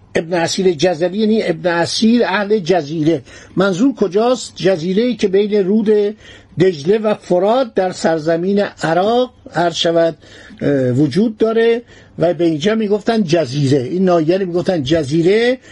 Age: 60-79